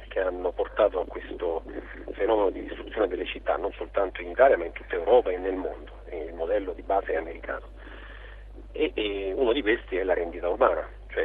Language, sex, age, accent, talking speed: Italian, male, 50-69, native, 195 wpm